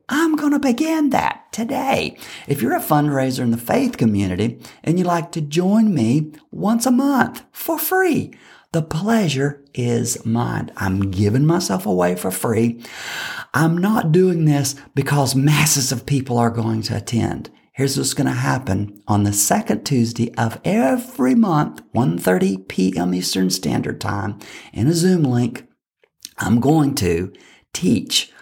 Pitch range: 115-170 Hz